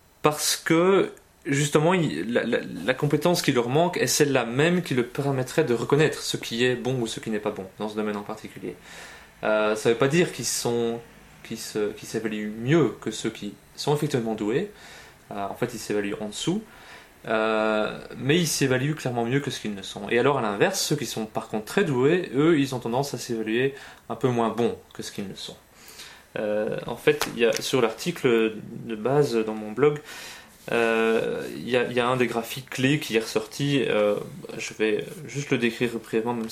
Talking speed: 210 wpm